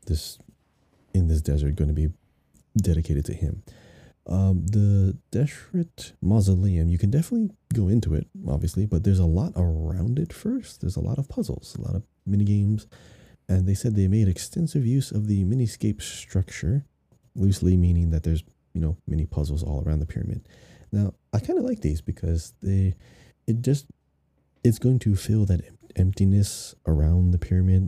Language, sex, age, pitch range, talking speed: English, male, 30-49, 85-105 Hz, 170 wpm